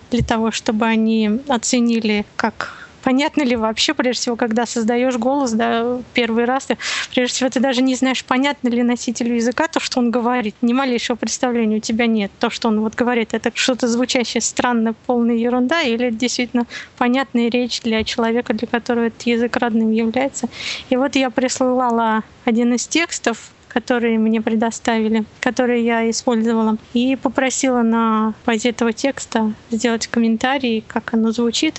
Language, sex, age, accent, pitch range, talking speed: Russian, female, 20-39, native, 230-255 Hz, 160 wpm